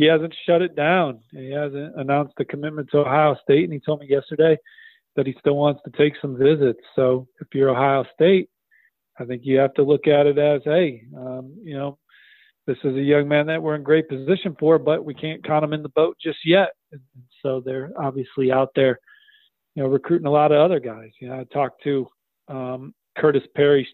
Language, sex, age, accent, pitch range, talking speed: English, male, 40-59, American, 130-150 Hz, 215 wpm